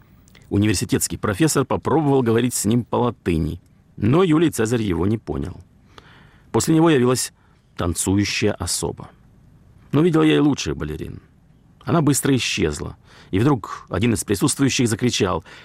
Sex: male